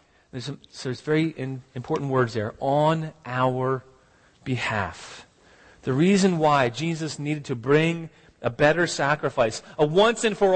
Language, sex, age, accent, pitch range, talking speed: English, male, 40-59, American, 135-200 Hz, 150 wpm